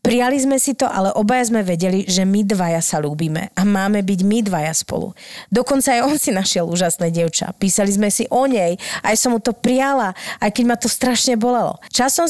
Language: Slovak